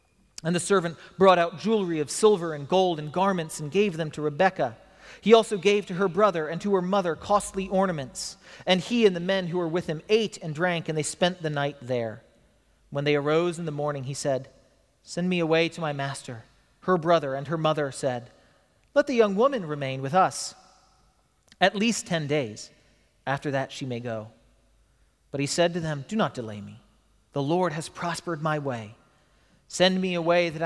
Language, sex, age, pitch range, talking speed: English, male, 40-59, 140-185 Hz, 200 wpm